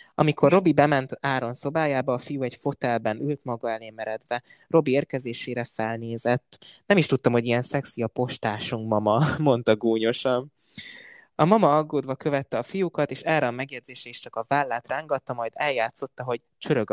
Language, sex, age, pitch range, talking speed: Hungarian, male, 20-39, 115-145 Hz, 160 wpm